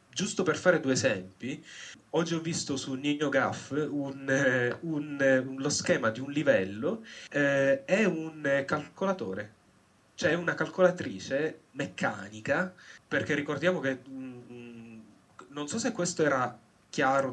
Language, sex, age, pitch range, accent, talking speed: Italian, male, 30-49, 115-150 Hz, native, 105 wpm